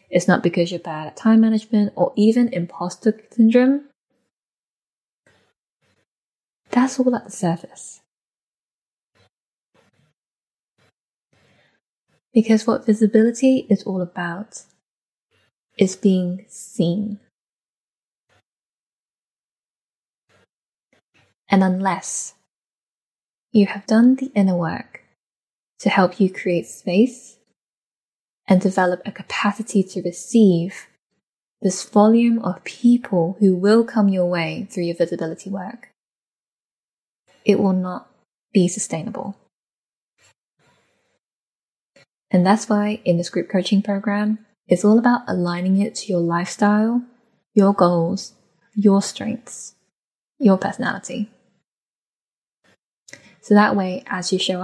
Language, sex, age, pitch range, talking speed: English, female, 10-29, 180-225 Hz, 100 wpm